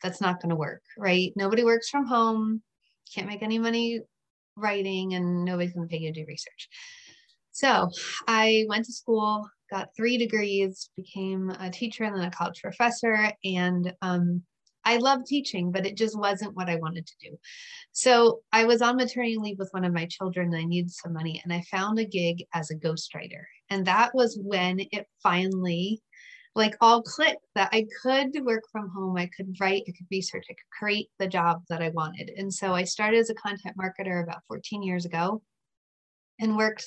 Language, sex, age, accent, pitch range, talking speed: English, female, 30-49, American, 180-225 Hz, 195 wpm